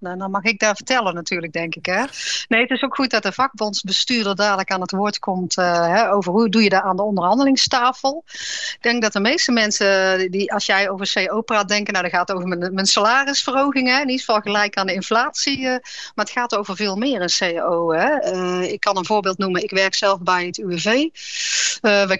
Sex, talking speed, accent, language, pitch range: female, 225 wpm, Dutch, Dutch, 195-245 Hz